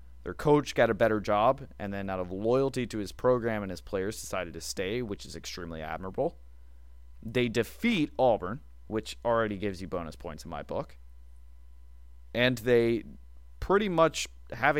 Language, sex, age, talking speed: English, male, 20-39, 165 wpm